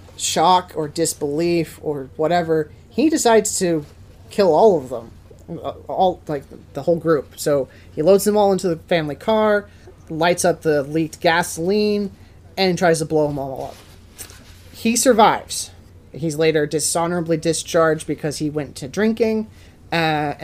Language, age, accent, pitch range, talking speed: English, 30-49, American, 140-180 Hz, 145 wpm